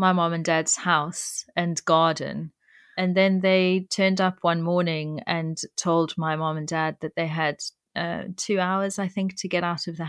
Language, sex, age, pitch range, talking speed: English, female, 30-49, 155-180 Hz, 195 wpm